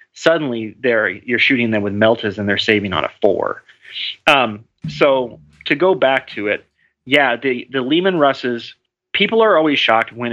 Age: 30-49